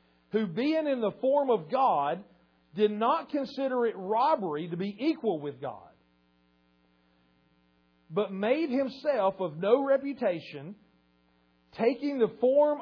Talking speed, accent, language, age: 120 wpm, American, English, 40-59